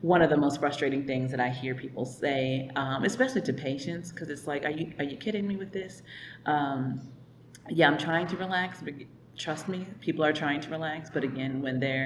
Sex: female